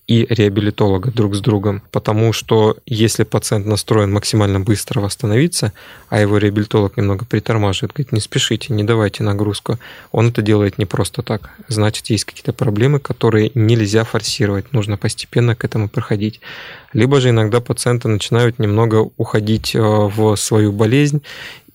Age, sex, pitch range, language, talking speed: 20-39, male, 105-120 Hz, Russian, 145 wpm